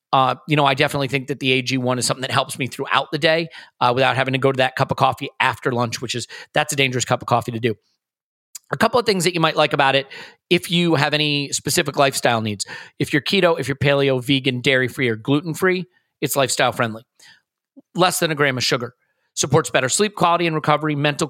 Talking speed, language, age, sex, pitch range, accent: 240 wpm, English, 40-59, male, 130-160 Hz, American